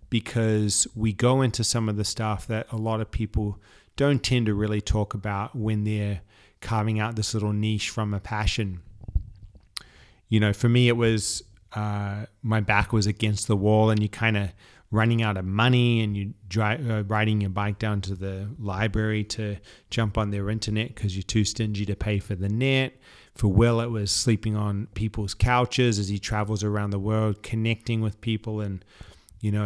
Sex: male